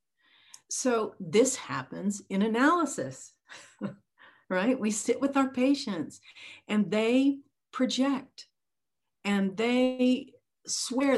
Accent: American